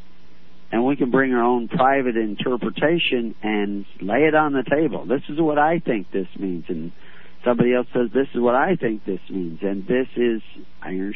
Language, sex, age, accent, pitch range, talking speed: English, male, 60-79, American, 95-125 Hz, 195 wpm